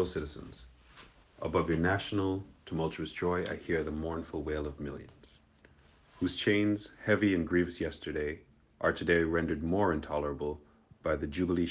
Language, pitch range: English, 75-95 Hz